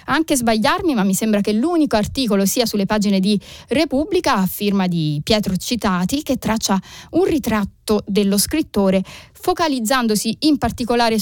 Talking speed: 145 wpm